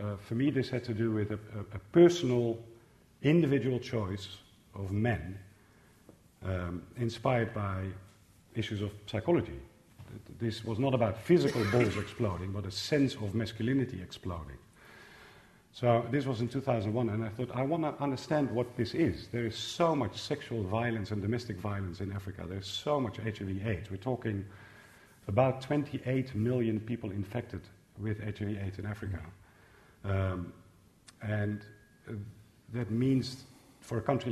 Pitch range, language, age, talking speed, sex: 105-125 Hz, English, 50-69, 145 wpm, male